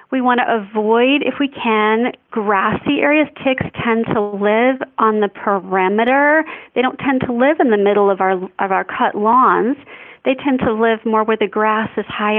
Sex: female